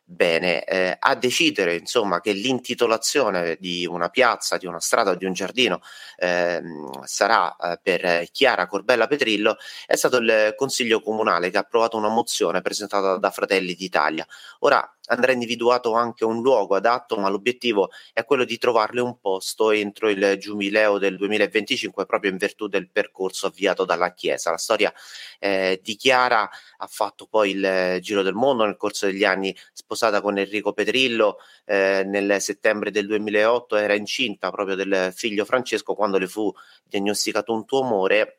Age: 30-49